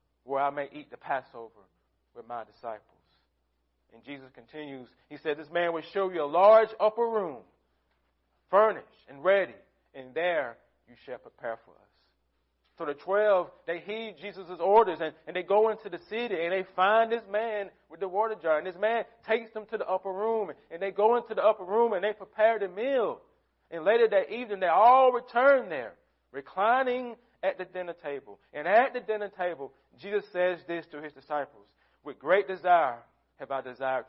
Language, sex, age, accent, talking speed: English, male, 40-59, American, 190 wpm